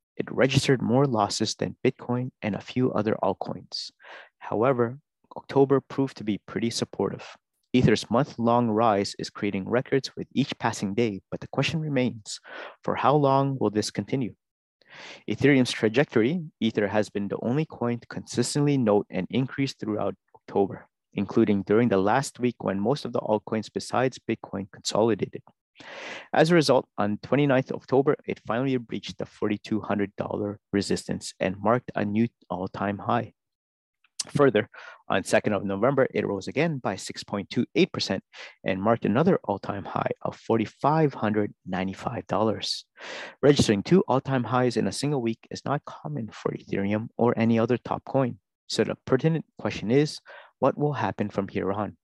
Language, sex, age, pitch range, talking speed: English, male, 30-49, 100-130 Hz, 150 wpm